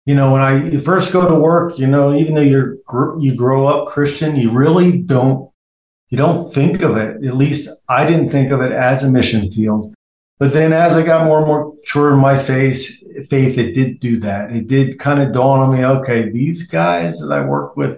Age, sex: 50-69, male